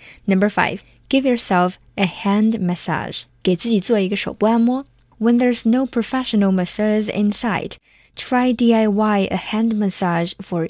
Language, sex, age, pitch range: Chinese, female, 20-39, 185-230 Hz